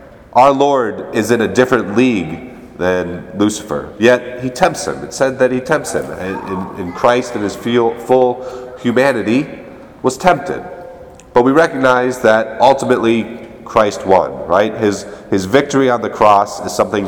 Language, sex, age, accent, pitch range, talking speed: English, male, 30-49, American, 105-140 Hz, 150 wpm